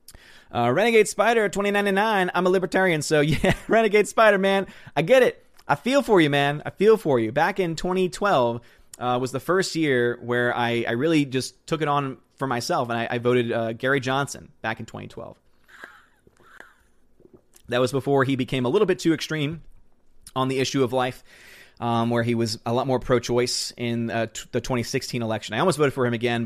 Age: 30-49